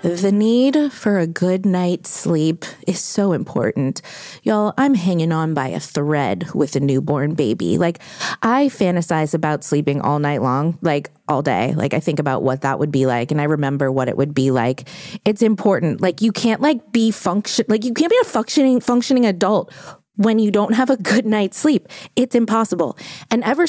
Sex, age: female, 20-39